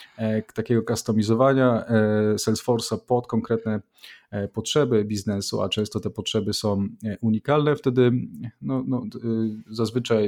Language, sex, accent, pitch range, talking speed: Polish, male, native, 105-125 Hz, 100 wpm